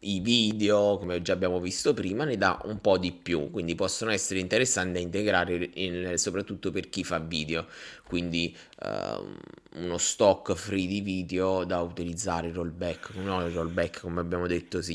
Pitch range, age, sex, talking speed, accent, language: 85-95 Hz, 20-39, male, 170 wpm, native, Italian